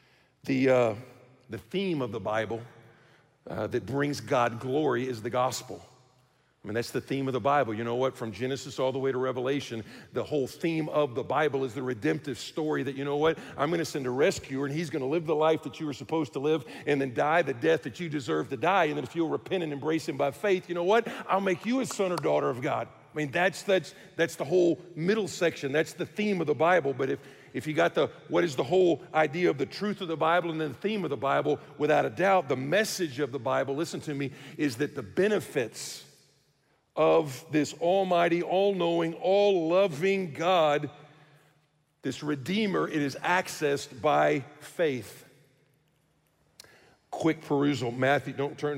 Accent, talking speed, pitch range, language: American, 210 wpm, 135-170 Hz, English